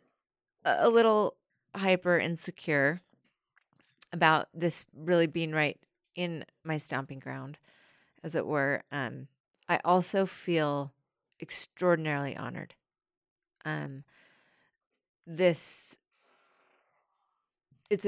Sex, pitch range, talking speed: female, 150-195 Hz, 85 wpm